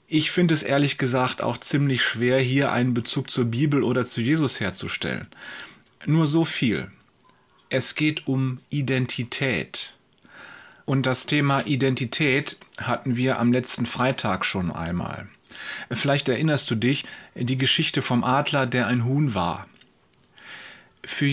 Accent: German